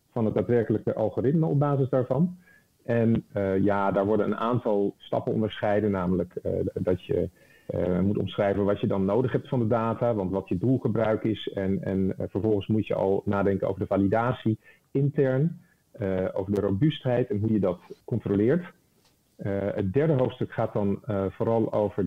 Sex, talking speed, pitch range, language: male, 180 wpm, 95-125 Hz, Dutch